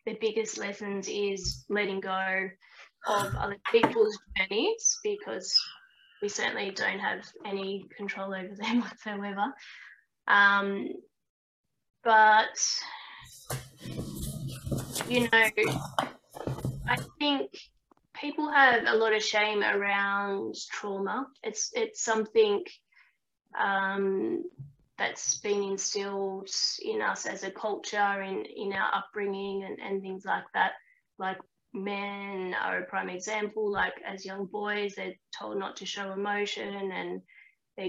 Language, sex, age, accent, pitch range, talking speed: English, female, 20-39, Australian, 195-225 Hz, 115 wpm